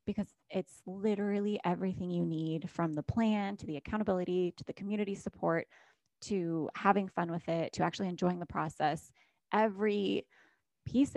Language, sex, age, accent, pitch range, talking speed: English, female, 20-39, American, 170-200 Hz, 150 wpm